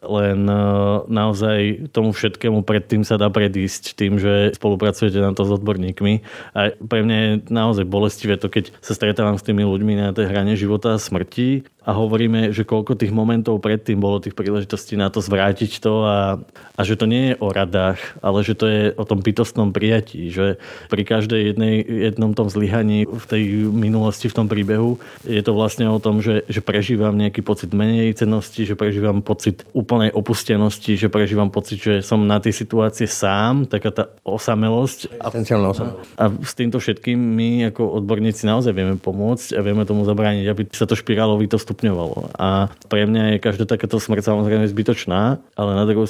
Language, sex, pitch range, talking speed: Slovak, male, 105-110 Hz, 180 wpm